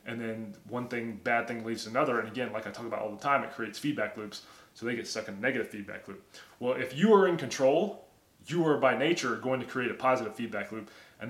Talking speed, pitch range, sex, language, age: 260 wpm, 115-145 Hz, male, English, 20-39